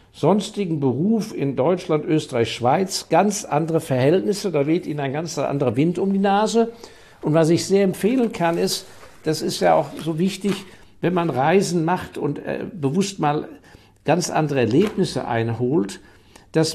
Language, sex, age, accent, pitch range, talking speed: German, male, 60-79, German, 145-185 Hz, 160 wpm